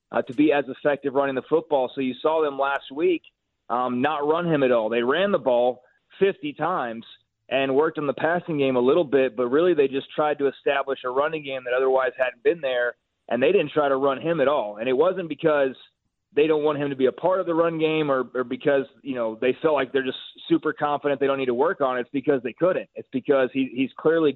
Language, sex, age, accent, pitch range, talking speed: English, male, 30-49, American, 130-155 Hz, 255 wpm